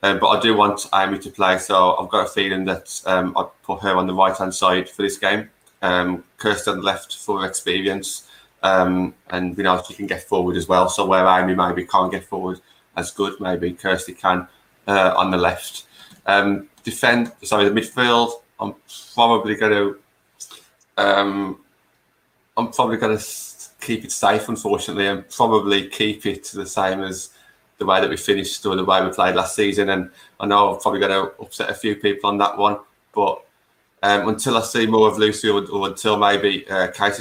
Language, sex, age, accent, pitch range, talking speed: English, male, 20-39, British, 90-105 Hz, 195 wpm